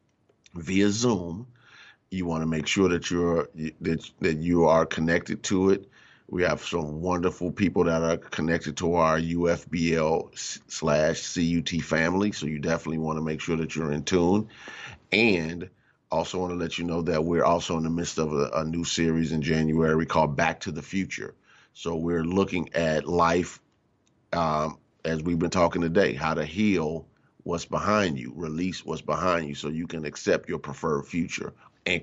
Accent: American